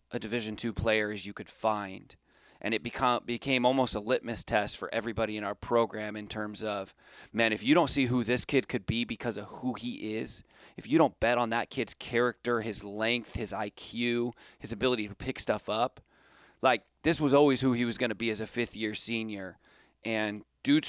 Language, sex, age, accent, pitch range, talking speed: English, male, 30-49, American, 110-125 Hz, 210 wpm